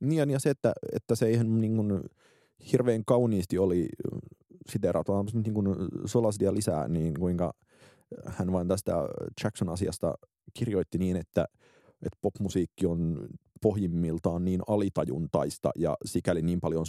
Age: 30-49